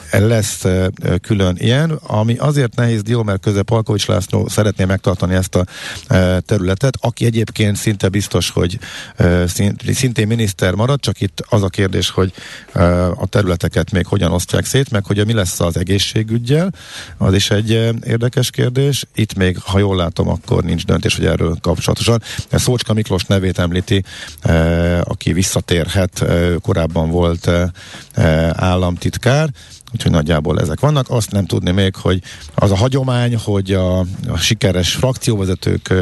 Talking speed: 140 wpm